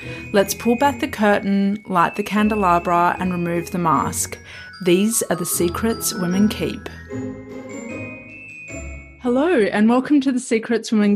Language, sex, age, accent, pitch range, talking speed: English, female, 30-49, Australian, 190-235 Hz, 135 wpm